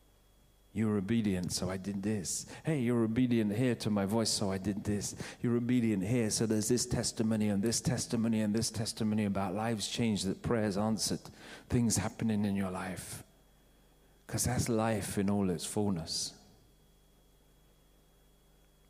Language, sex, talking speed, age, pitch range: English, male, 150 wpm, 40-59, 95-120 Hz